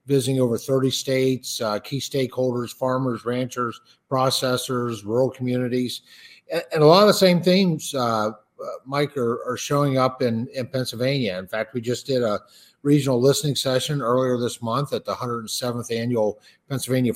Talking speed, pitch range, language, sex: 165 wpm, 115-145 Hz, English, male